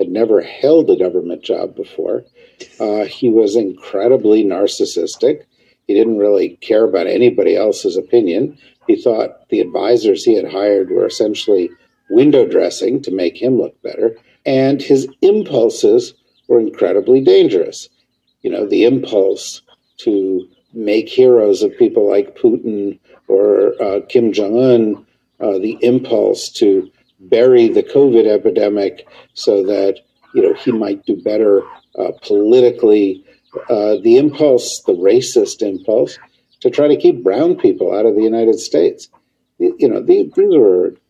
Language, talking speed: English, 140 wpm